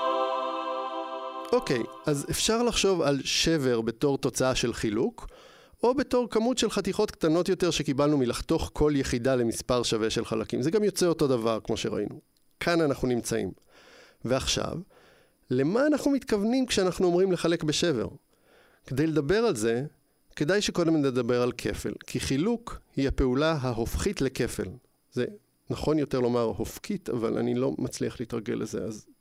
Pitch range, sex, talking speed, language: 125-175 Hz, male, 145 wpm, English